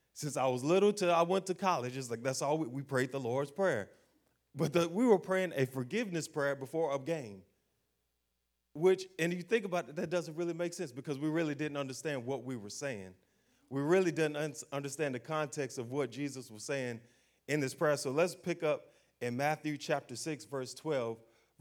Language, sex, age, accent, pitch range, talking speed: English, male, 30-49, American, 115-155 Hz, 210 wpm